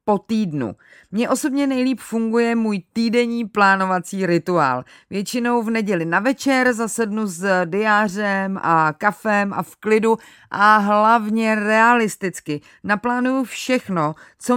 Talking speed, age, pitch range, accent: 120 wpm, 30-49, 190-235 Hz, native